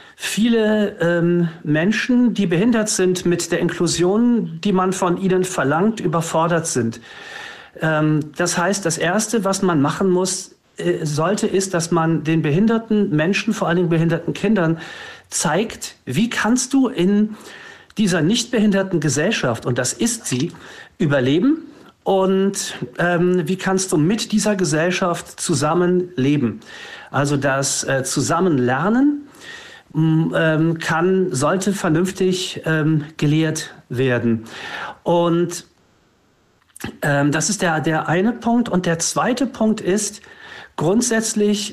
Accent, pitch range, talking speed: German, 165-225 Hz, 120 wpm